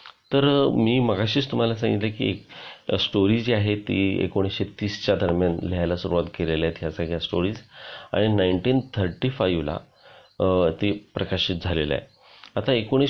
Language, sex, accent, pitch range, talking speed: Marathi, male, native, 90-110 Hz, 120 wpm